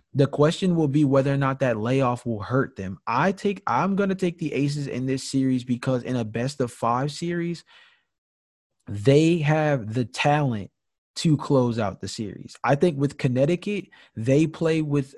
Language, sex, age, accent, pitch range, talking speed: English, male, 20-39, American, 115-145 Hz, 165 wpm